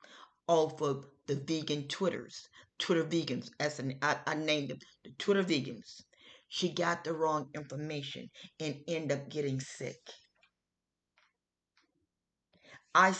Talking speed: 120 wpm